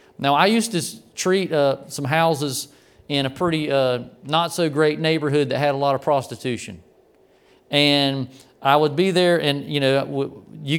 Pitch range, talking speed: 130-160 Hz, 165 wpm